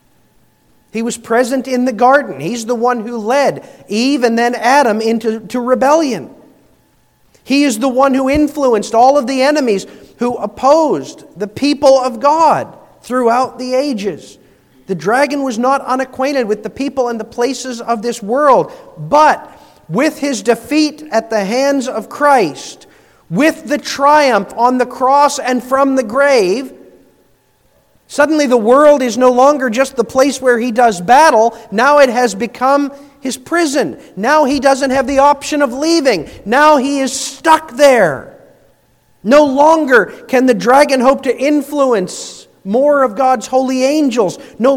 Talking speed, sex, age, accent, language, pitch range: 155 wpm, male, 40-59, American, English, 235-285 Hz